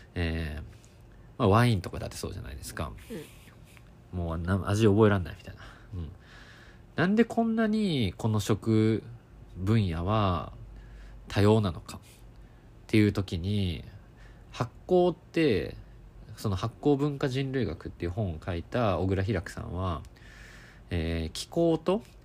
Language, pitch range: Japanese, 95-120 Hz